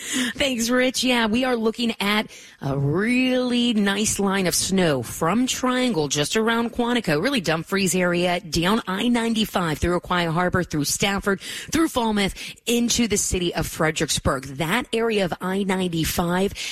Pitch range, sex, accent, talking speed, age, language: 155-200 Hz, female, American, 145 wpm, 30-49, English